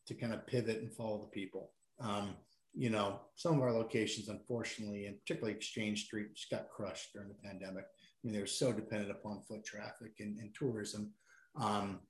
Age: 40-59